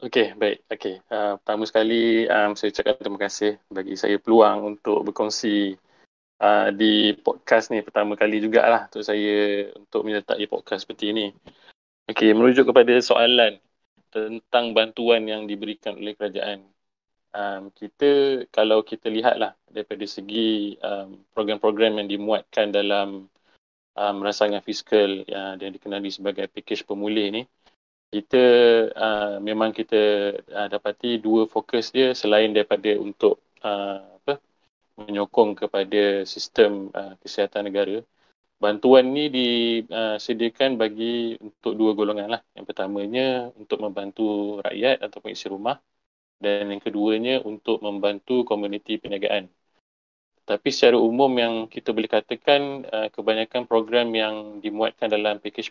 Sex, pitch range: male, 105-115 Hz